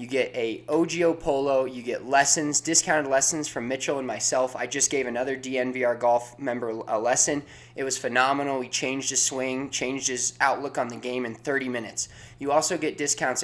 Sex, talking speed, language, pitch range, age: male, 190 wpm, English, 125-150 Hz, 20-39